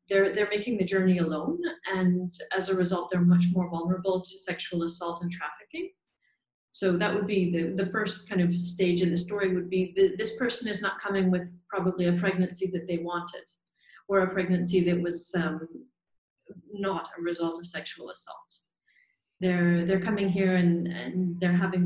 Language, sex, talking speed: English, female, 185 wpm